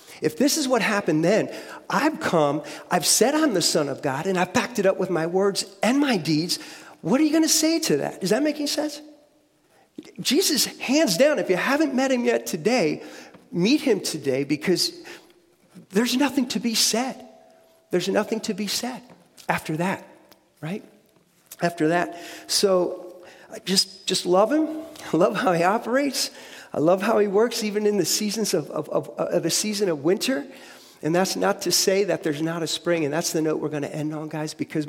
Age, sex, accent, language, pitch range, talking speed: 40-59, male, American, English, 155-220 Hz, 200 wpm